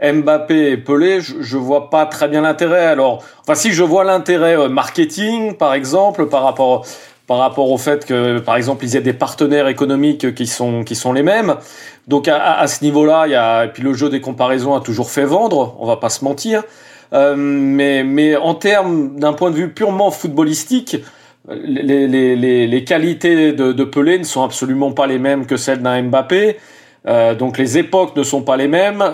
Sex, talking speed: male, 210 wpm